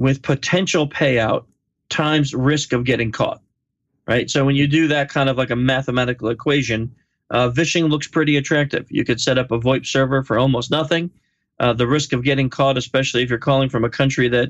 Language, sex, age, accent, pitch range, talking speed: English, male, 40-59, American, 120-150 Hz, 205 wpm